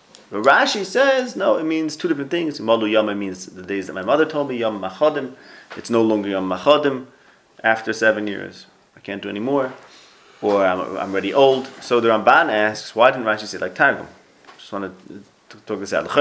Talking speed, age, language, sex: 200 wpm, 30-49, English, male